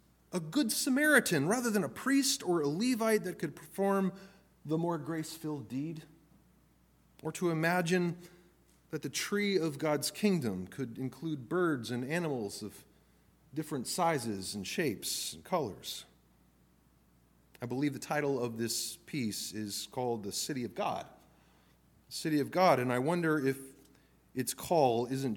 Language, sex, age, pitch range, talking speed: English, male, 30-49, 100-160 Hz, 145 wpm